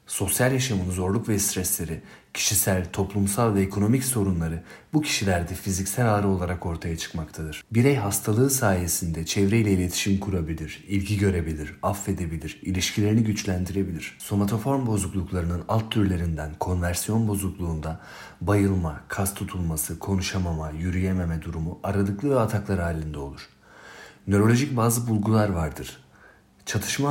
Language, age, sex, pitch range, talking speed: Turkish, 40-59, male, 85-110 Hz, 110 wpm